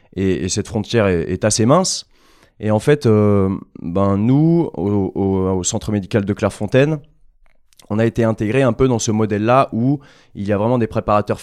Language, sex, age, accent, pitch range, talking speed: French, male, 20-39, French, 95-115 Hz, 195 wpm